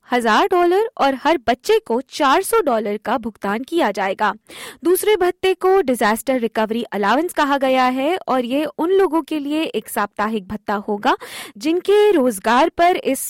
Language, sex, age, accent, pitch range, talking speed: Hindi, female, 20-39, native, 225-340 Hz, 160 wpm